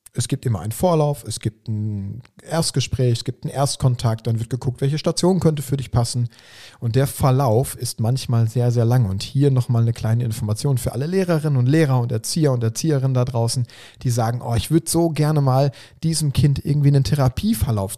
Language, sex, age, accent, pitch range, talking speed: German, male, 40-59, German, 115-140 Hz, 200 wpm